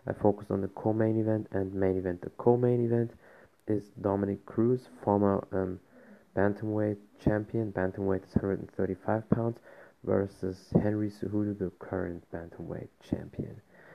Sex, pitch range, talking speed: male, 95-110 Hz, 130 wpm